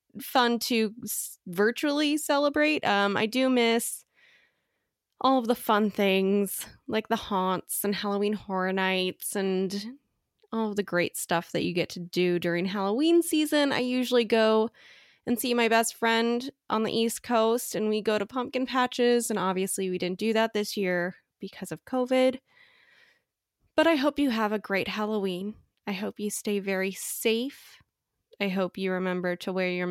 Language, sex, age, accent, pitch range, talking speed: English, female, 10-29, American, 200-260 Hz, 170 wpm